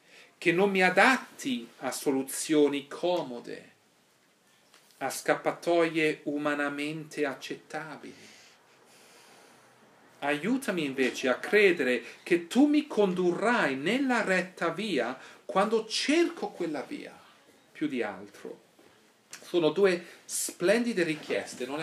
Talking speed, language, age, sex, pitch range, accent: 95 wpm, Italian, 40-59, male, 145-225 Hz, native